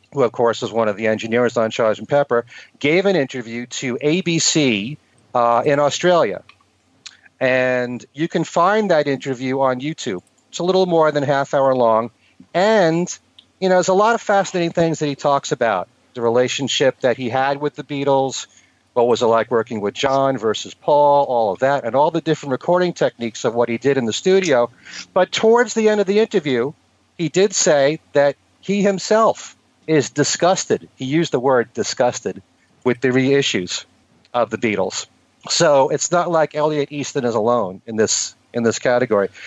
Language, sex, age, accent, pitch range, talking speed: English, male, 40-59, American, 120-165 Hz, 185 wpm